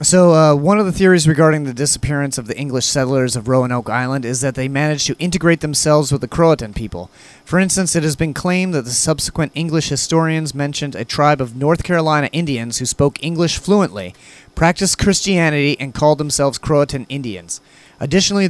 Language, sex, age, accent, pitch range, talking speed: English, male, 30-49, American, 125-160 Hz, 185 wpm